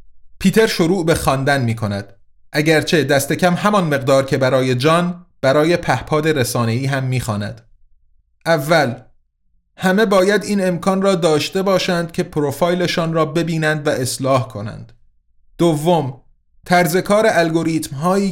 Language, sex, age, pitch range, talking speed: Persian, male, 30-49, 130-175 Hz, 120 wpm